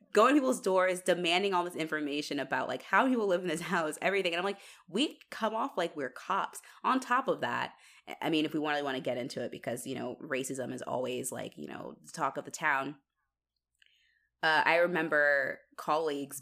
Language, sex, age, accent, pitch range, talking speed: English, female, 20-39, American, 135-180 Hz, 210 wpm